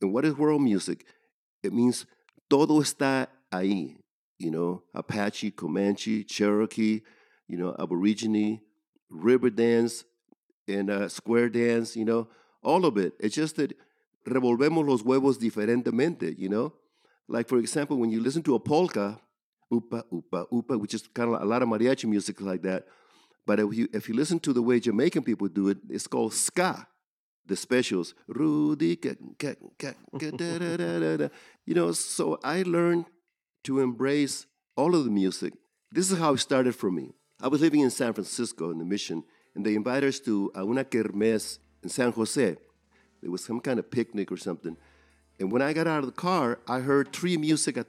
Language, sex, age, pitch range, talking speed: English, male, 50-69, 105-140 Hz, 175 wpm